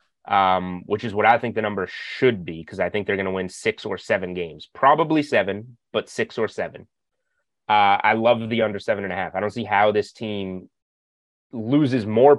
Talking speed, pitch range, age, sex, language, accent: 215 wpm, 95-110 Hz, 30-49, male, English, American